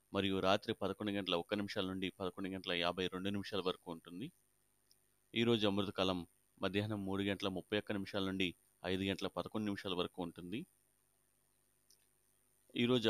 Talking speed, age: 135 wpm, 30-49